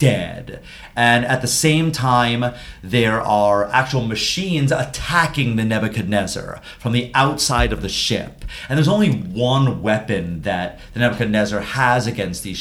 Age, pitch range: 30-49, 105-135 Hz